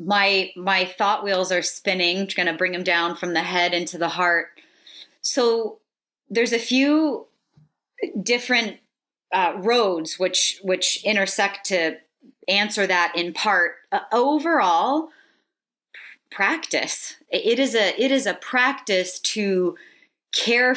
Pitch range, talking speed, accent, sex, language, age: 175-225 Hz, 125 wpm, American, female, English, 30-49